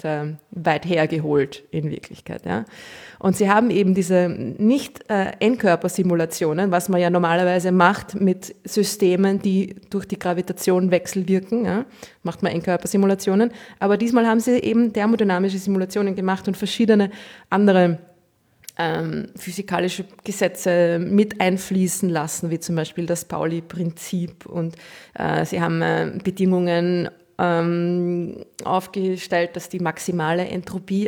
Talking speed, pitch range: 120 wpm, 175-200 Hz